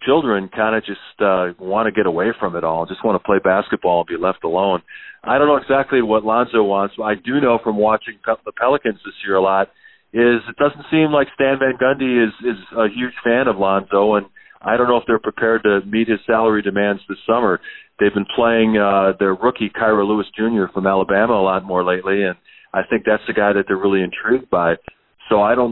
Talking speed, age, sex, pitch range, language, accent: 230 wpm, 40-59, male, 100-120 Hz, English, American